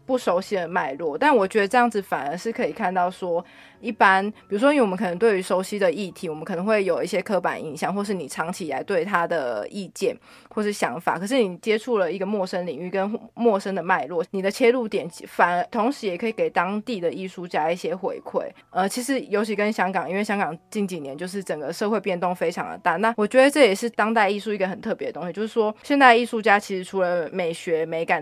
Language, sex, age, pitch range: Chinese, female, 20-39, 185-230 Hz